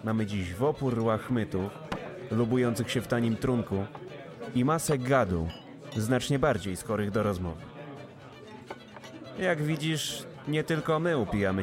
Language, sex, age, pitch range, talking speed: Polish, male, 30-49, 105-135 Hz, 125 wpm